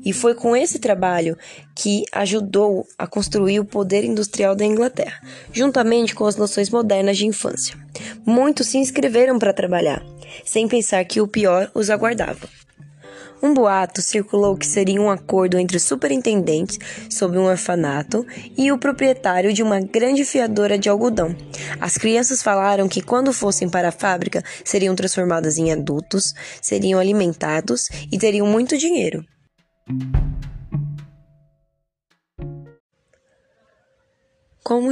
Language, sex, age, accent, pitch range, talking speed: Portuguese, female, 10-29, Brazilian, 170-225 Hz, 125 wpm